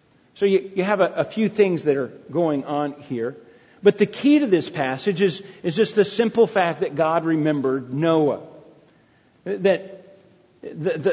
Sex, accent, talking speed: male, American, 165 wpm